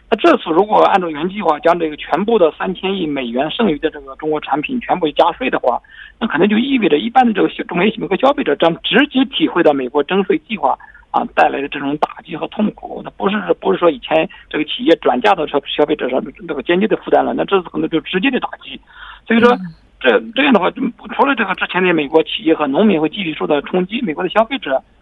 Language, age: Korean, 50-69